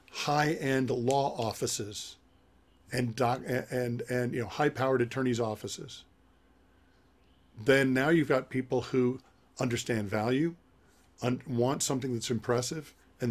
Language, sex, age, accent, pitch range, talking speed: English, male, 50-69, American, 110-130 Hz, 115 wpm